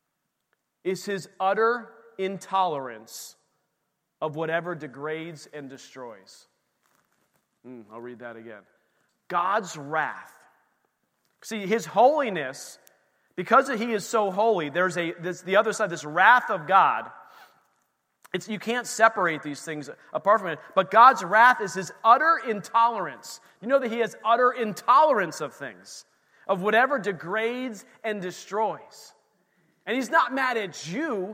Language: English